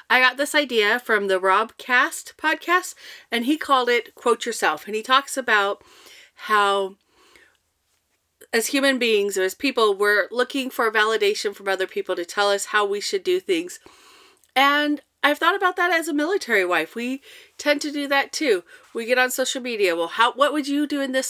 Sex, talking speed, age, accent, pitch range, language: female, 195 wpm, 40-59, American, 220-300 Hz, English